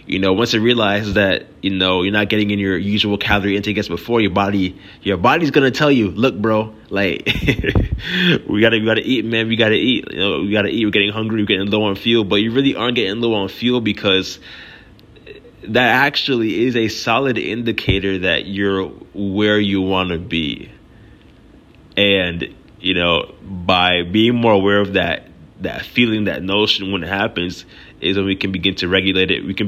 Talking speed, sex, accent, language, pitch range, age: 210 wpm, male, American, English, 95-110 Hz, 20-39